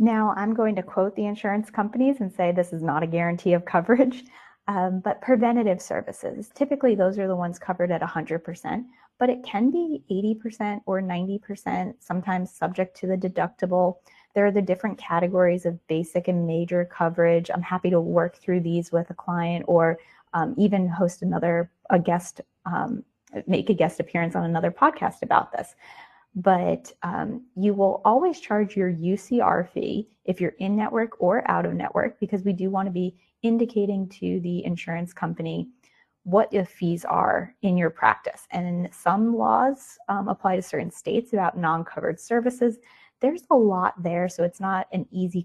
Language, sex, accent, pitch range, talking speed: English, female, American, 175-215 Hz, 175 wpm